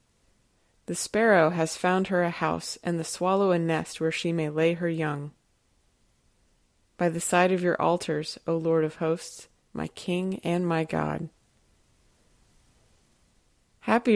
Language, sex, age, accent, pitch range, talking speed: English, female, 20-39, American, 160-185 Hz, 145 wpm